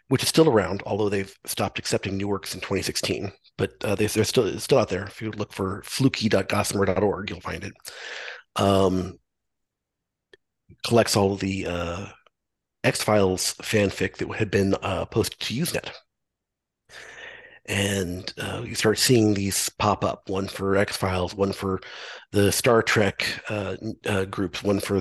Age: 40-59